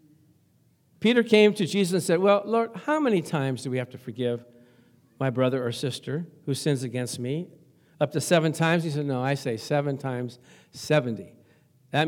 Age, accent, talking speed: 50-69, American, 185 wpm